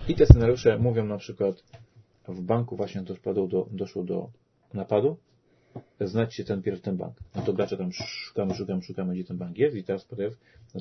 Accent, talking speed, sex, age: native, 190 wpm, male, 40-59